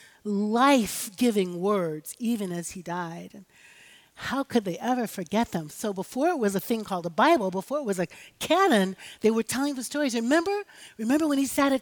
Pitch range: 190-275 Hz